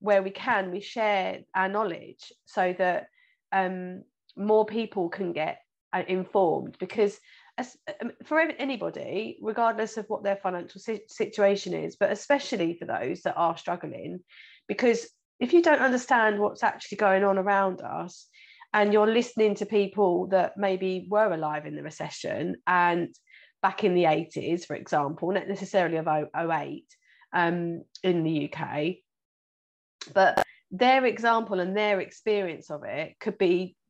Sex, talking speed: female, 140 wpm